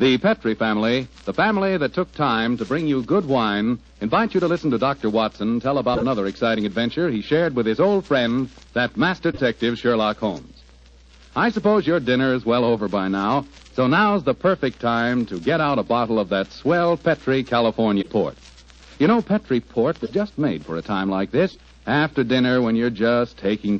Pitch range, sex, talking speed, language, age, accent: 105-155 Hz, male, 200 wpm, English, 60-79, American